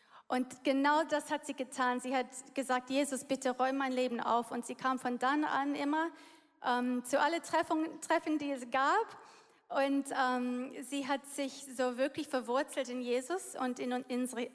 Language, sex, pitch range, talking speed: German, female, 250-290 Hz, 175 wpm